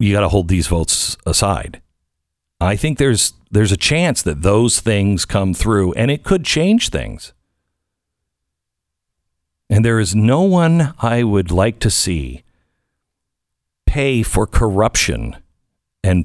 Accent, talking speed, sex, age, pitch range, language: American, 135 wpm, male, 50-69, 85-120 Hz, English